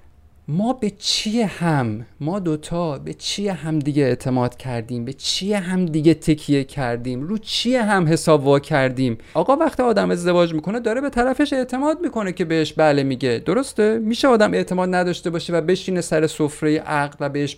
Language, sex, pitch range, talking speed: Persian, male, 135-205 Hz, 175 wpm